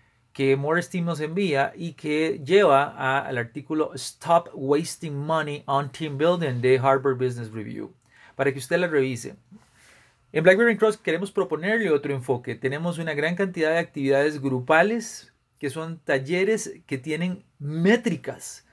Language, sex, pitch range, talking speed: Spanish, male, 135-165 Hz, 140 wpm